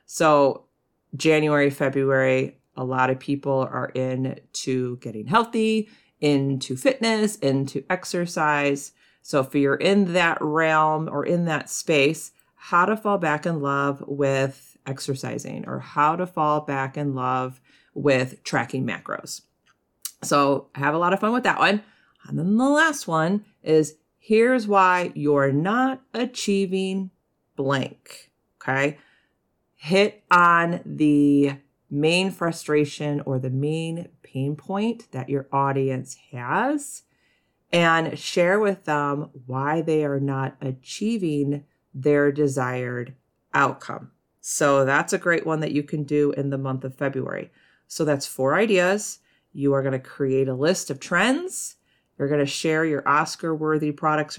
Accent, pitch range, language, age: American, 140-180 Hz, English, 40-59